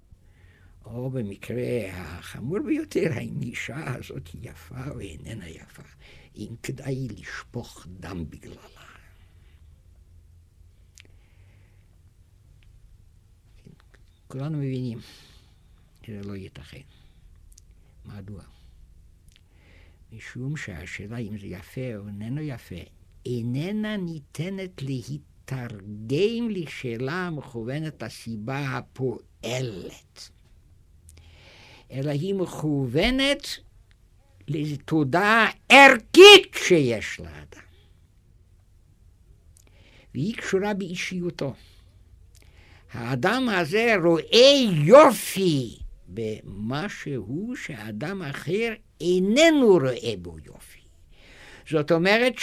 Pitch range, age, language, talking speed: 90-150 Hz, 60-79, Hebrew, 70 wpm